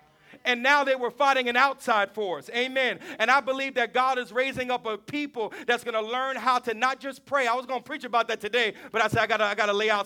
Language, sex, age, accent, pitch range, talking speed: English, male, 40-59, American, 230-265 Hz, 270 wpm